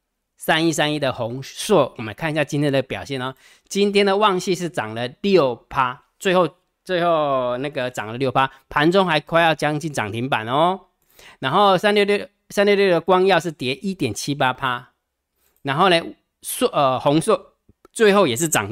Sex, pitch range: male, 130-180 Hz